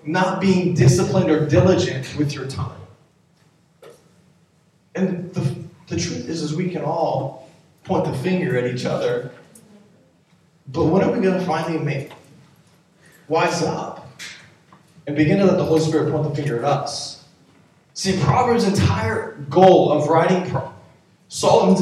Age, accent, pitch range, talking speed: 20-39, American, 150-185 Hz, 145 wpm